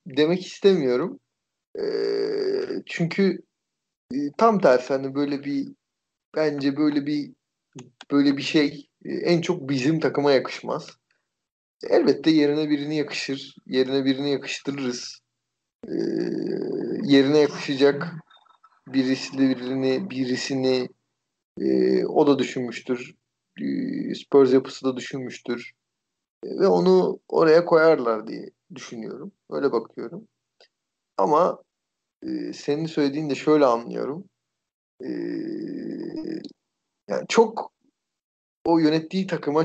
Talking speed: 90 wpm